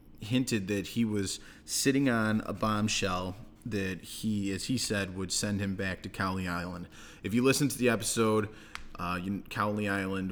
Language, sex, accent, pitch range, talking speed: English, male, American, 95-110 Hz, 170 wpm